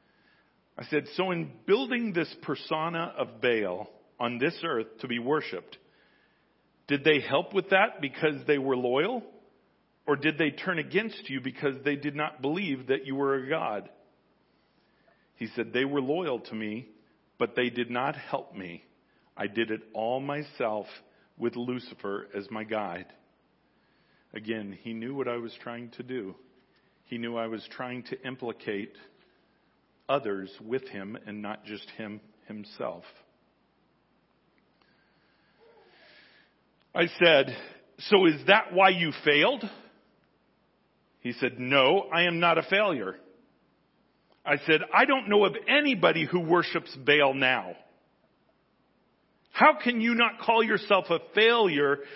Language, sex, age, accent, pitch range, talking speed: English, male, 40-59, American, 120-200 Hz, 140 wpm